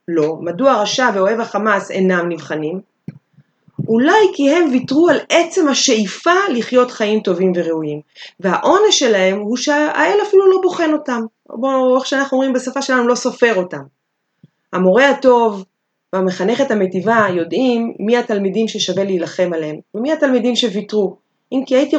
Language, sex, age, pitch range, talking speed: Hebrew, female, 30-49, 190-260 Hz, 145 wpm